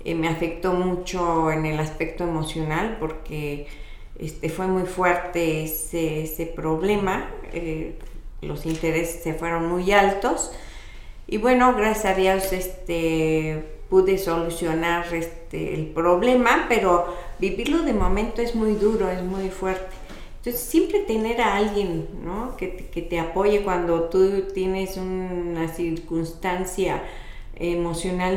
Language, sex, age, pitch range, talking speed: Spanish, female, 40-59, 165-190 Hz, 125 wpm